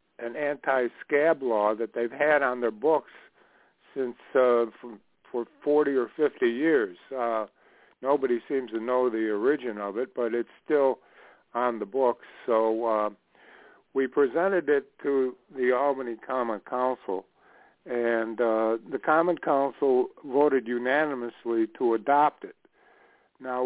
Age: 60-79